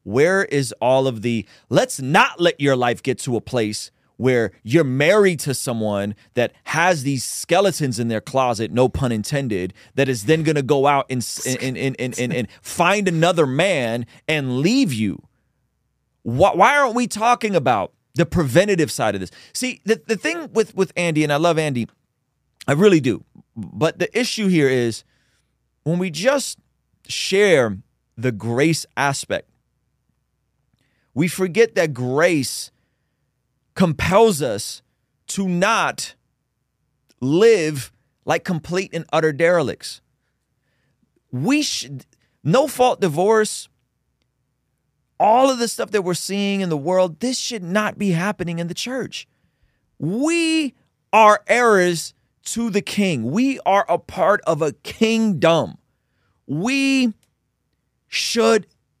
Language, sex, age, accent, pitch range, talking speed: English, male, 30-49, American, 125-200 Hz, 140 wpm